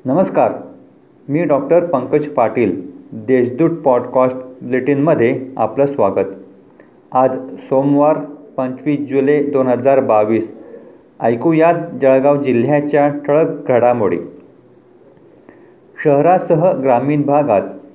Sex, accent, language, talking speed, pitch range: male, native, Marathi, 85 wpm, 125-150 Hz